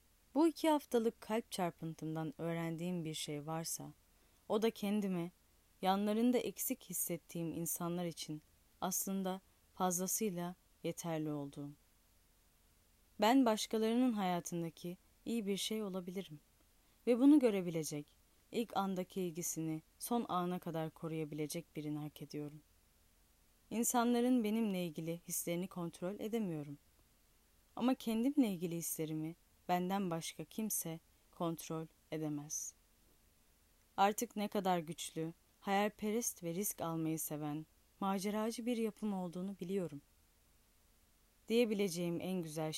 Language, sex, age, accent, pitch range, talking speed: Turkish, female, 10-29, native, 155-205 Hz, 100 wpm